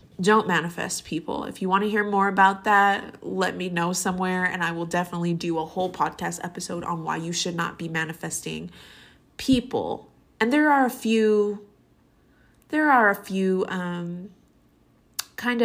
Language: English